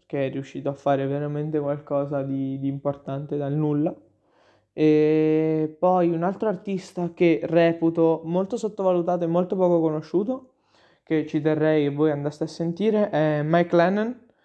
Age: 20-39